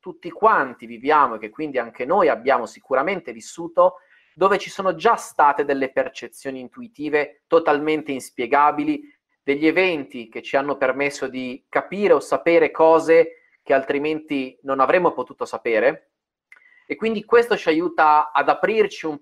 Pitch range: 145-245 Hz